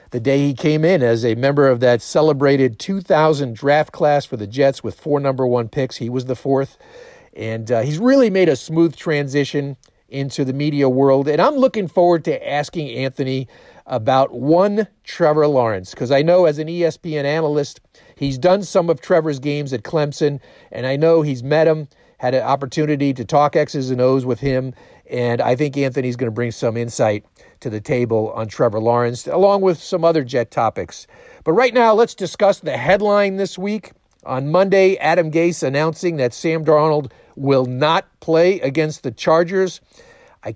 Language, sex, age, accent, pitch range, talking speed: English, male, 50-69, American, 130-165 Hz, 185 wpm